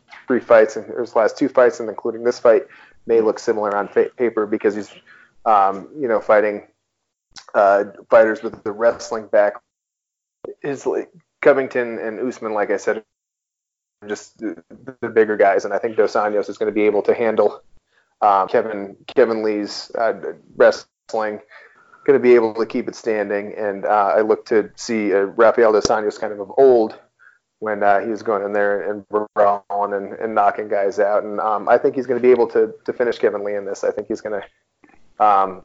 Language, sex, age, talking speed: English, male, 30-49, 200 wpm